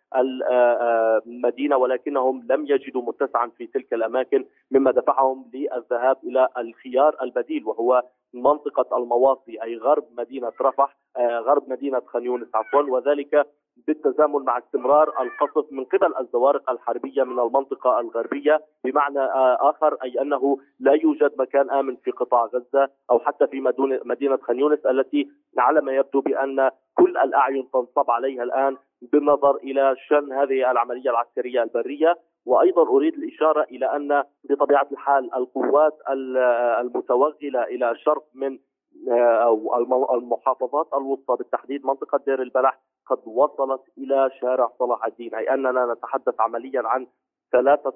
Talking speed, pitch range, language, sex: 125 wpm, 125-145 Hz, Arabic, male